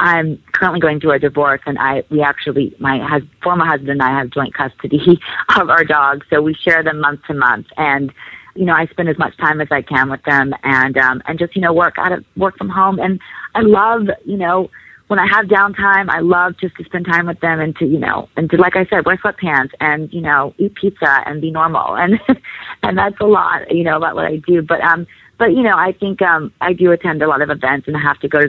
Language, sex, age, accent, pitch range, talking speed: English, female, 40-59, American, 140-180 Hz, 255 wpm